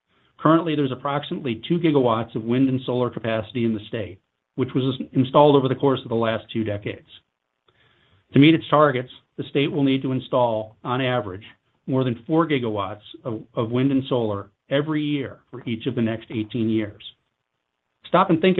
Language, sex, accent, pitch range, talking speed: English, male, American, 110-140 Hz, 185 wpm